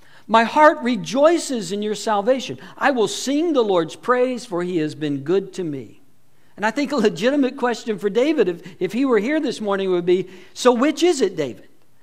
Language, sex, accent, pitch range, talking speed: English, male, American, 195-255 Hz, 205 wpm